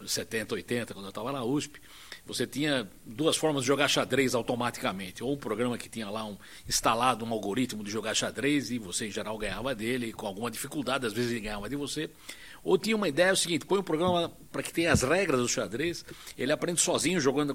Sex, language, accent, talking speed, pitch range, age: male, Portuguese, Brazilian, 225 wpm, 115-150 Hz, 60-79